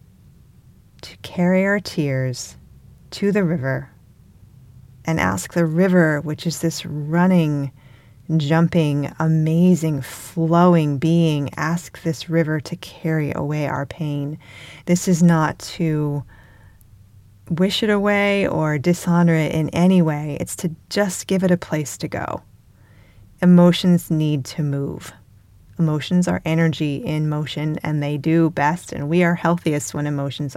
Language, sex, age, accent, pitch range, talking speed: English, female, 30-49, American, 140-170 Hz, 135 wpm